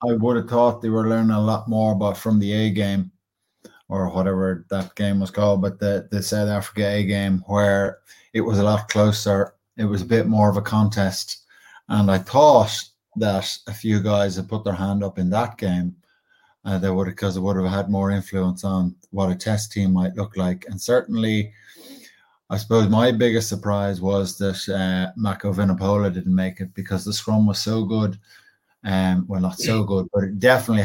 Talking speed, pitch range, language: 200 wpm, 100-110 Hz, English